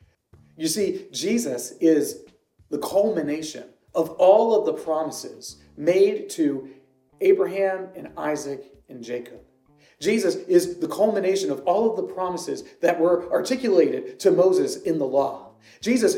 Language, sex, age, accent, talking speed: English, male, 30-49, American, 135 wpm